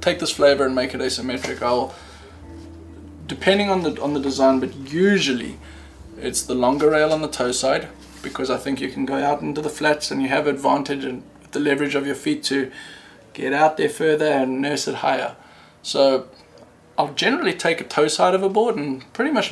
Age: 20-39